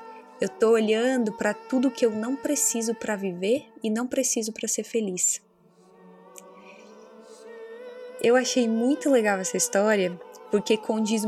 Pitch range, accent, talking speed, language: 195-250 Hz, Brazilian, 135 wpm, Portuguese